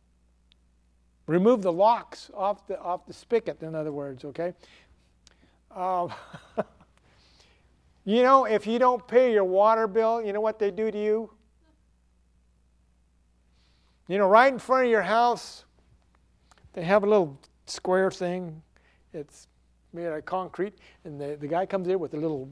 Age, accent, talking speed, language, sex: 60-79, American, 150 wpm, English, male